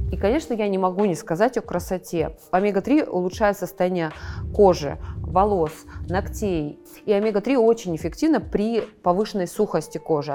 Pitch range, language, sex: 160-200 Hz, Russian, female